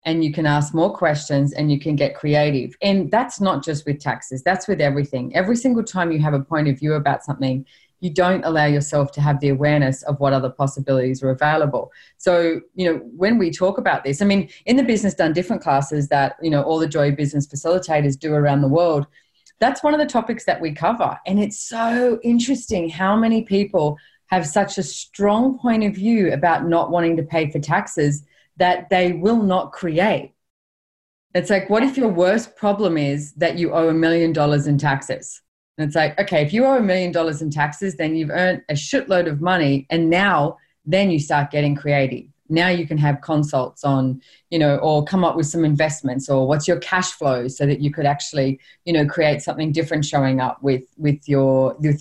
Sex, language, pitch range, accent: female, English, 145-185 Hz, Australian